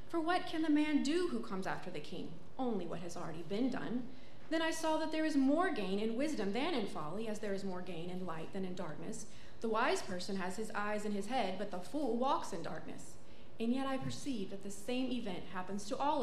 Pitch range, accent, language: 190-270 Hz, American, English